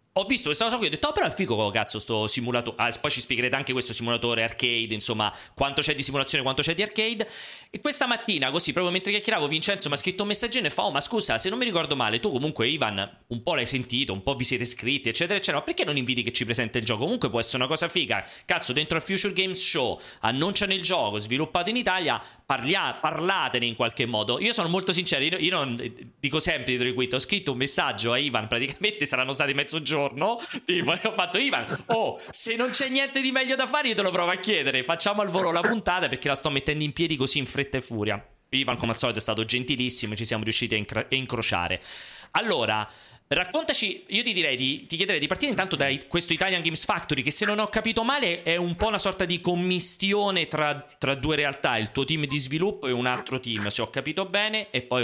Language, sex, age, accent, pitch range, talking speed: Italian, male, 30-49, native, 120-185 Hz, 240 wpm